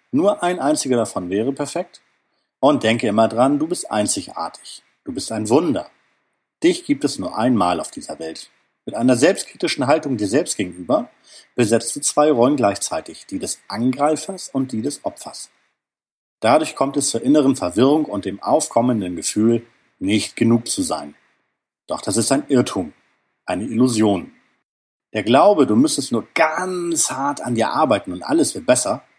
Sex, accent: male, German